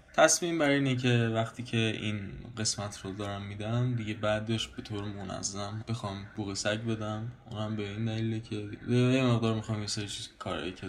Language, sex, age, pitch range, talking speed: Persian, male, 20-39, 105-120 Hz, 175 wpm